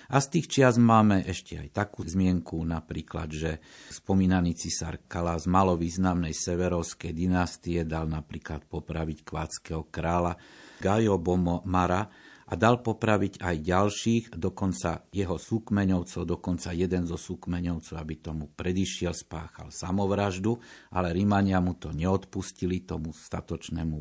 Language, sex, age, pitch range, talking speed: Slovak, male, 50-69, 85-100 Hz, 120 wpm